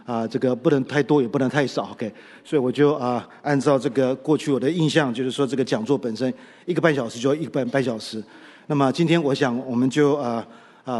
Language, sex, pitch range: Chinese, male, 125-150 Hz